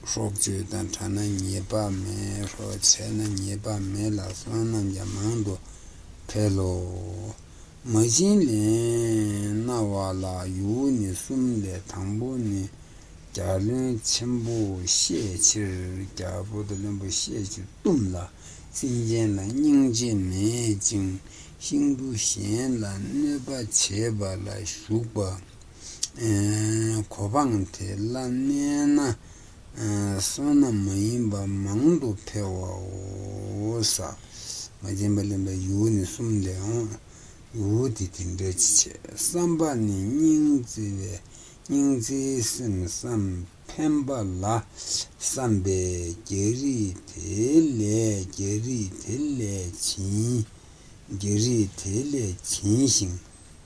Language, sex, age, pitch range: Italian, male, 60-79, 95-115 Hz